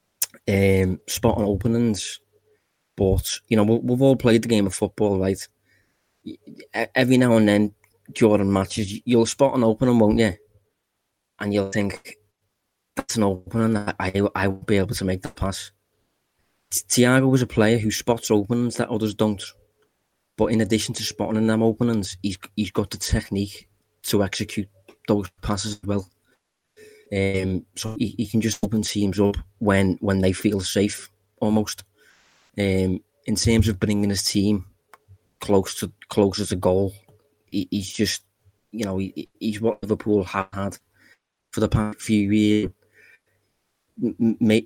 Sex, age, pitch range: male, 20-39, 95-110 Hz